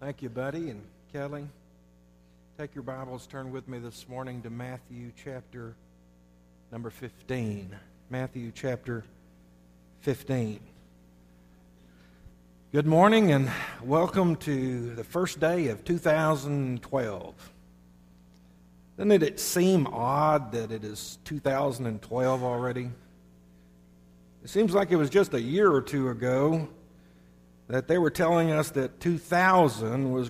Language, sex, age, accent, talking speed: English, male, 50-69, American, 115 wpm